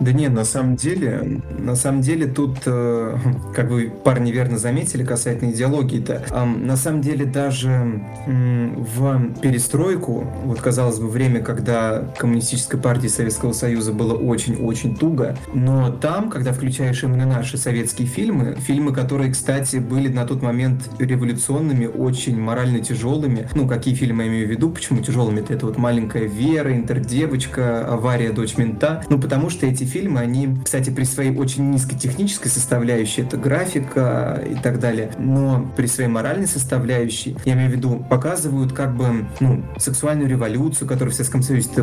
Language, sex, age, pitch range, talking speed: Russian, male, 20-39, 120-135 Hz, 160 wpm